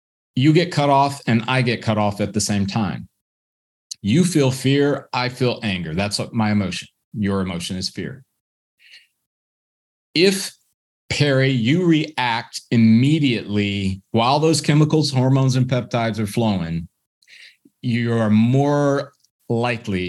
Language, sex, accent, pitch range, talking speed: English, male, American, 100-130 Hz, 125 wpm